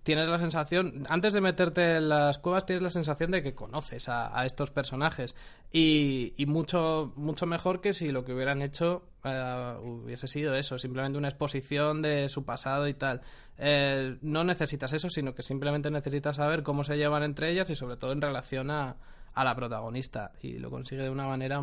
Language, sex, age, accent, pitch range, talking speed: English, male, 20-39, Spanish, 130-160 Hz, 195 wpm